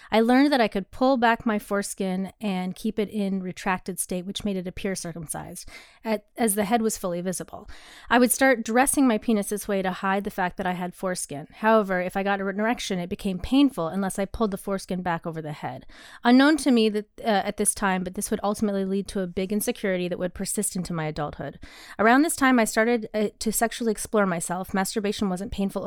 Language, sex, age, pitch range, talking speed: English, female, 30-49, 180-220 Hz, 225 wpm